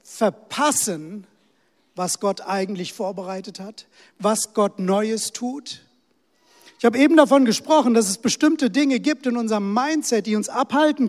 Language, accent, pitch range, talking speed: German, German, 190-245 Hz, 140 wpm